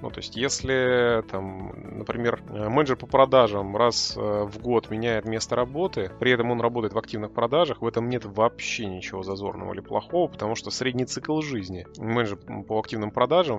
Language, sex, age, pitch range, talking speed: Russian, male, 20-39, 105-125 Hz, 170 wpm